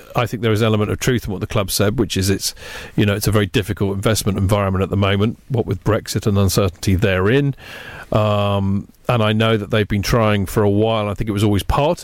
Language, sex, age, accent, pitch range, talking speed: English, male, 40-59, British, 100-120 Hz, 250 wpm